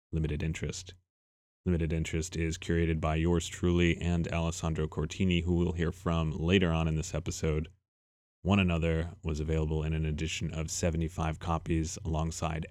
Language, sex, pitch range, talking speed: English, male, 80-90 Hz, 150 wpm